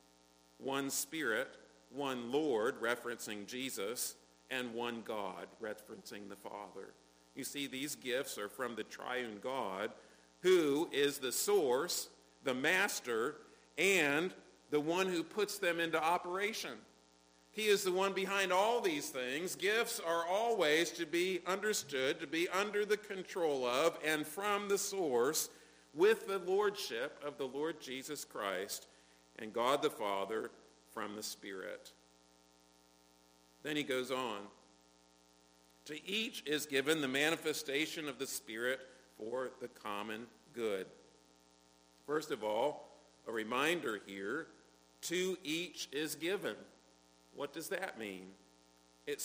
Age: 50-69